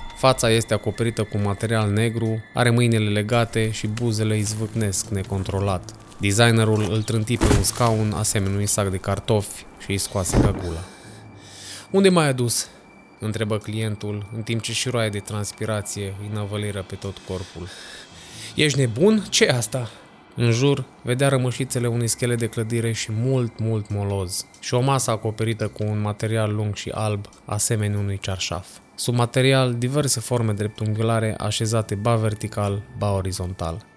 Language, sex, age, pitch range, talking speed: Romanian, male, 20-39, 105-125 Hz, 150 wpm